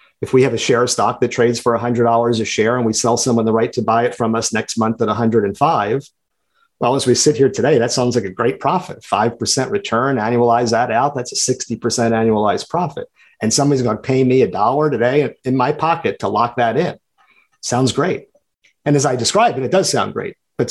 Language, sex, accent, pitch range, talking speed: English, male, American, 115-140 Hz, 225 wpm